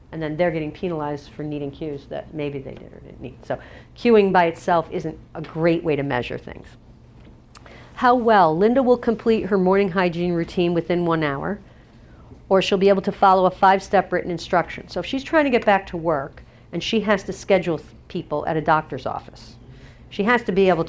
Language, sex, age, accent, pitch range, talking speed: English, female, 50-69, American, 160-215 Hz, 205 wpm